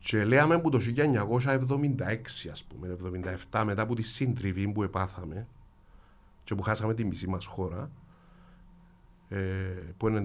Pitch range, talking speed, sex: 95-145 Hz, 140 wpm, male